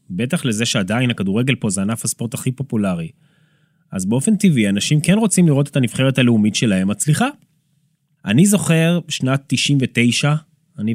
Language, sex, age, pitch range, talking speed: Hebrew, male, 20-39, 115-165 Hz, 150 wpm